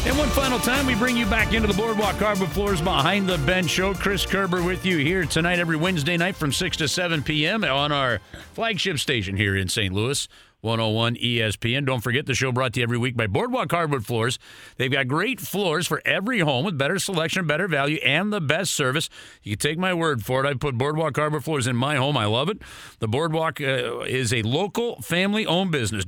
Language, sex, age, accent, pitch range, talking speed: English, male, 40-59, American, 135-195 Hz, 220 wpm